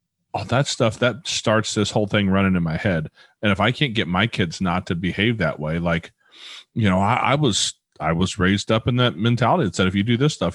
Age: 40-59